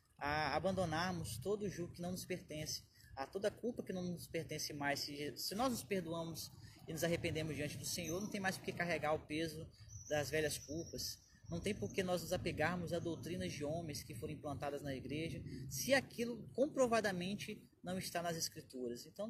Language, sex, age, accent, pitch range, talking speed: Portuguese, male, 20-39, Brazilian, 135-170 Hz, 190 wpm